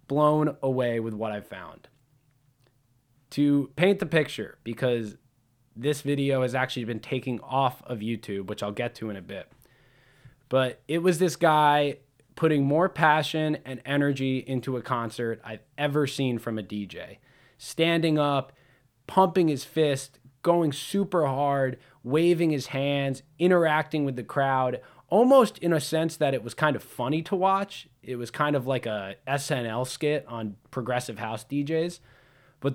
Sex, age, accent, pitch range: male, 20-39, American, 120-150 Hz